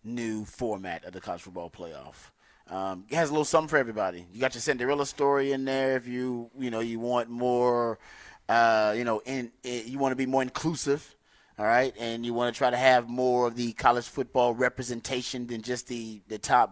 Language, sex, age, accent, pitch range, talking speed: English, male, 30-49, American, 110-125 Hz, 210 wpm